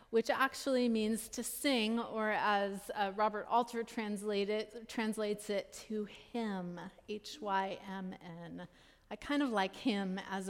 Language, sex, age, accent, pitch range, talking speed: English, female, 30-49, American, 185-220 Hz, 120 wpm